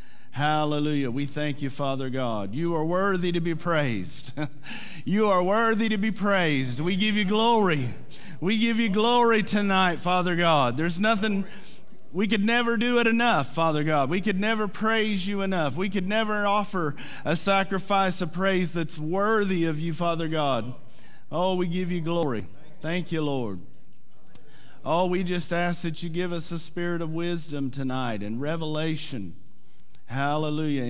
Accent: American